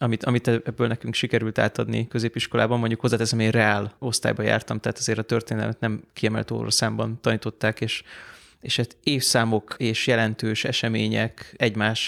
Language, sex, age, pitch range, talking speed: Hungarian, male, 20-39, 115-135 Hz, 145 wpm